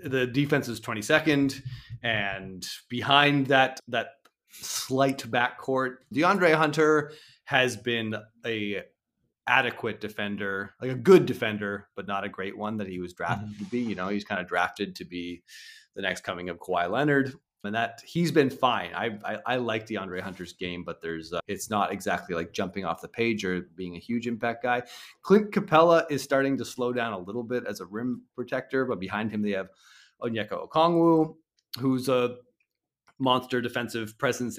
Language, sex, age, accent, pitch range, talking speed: English, male, 30-49, American, 100-135 Hz, 175 wpm